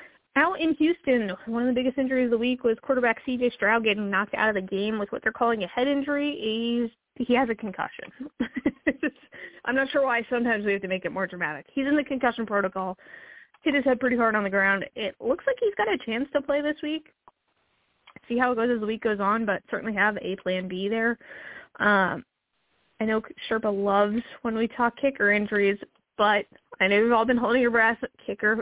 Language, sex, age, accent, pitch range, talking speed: English, female, 20-39, American, 215-265 Hz, 220 wpm